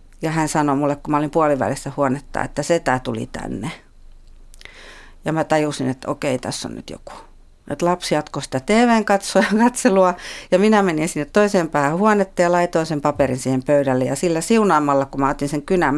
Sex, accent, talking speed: female, native, 190 wpm